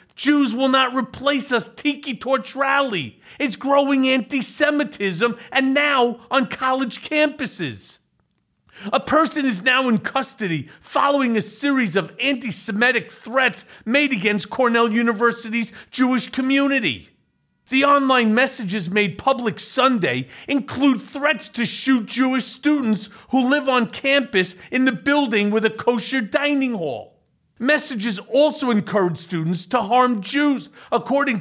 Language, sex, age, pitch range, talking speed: English, male, 40-59, 220-280 Hz, 125 wpm